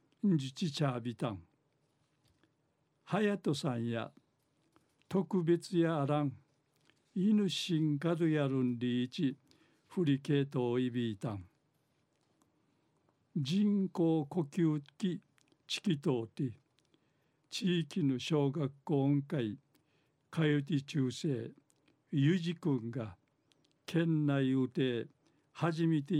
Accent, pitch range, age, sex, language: native, 140-160 Hz, 60-79, male, Japanese